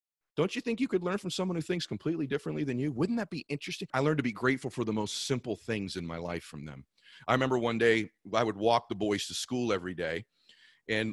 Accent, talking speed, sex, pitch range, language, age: American, 255 wpm, male, 115-165 Hz, English, 40-59